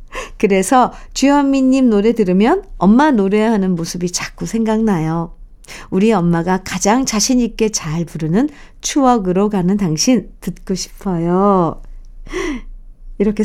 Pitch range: 175-245 Hz